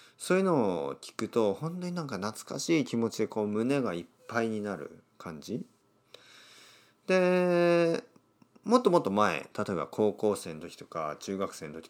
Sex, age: male, 40-59